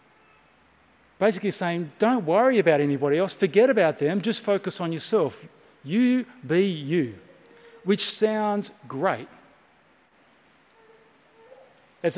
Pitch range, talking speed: 160-215 Hz, 105 wpm